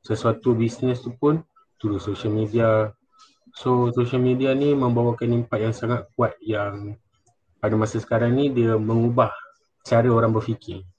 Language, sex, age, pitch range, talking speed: Malay, male, 20-39, 110-125 Hz, 145 wpm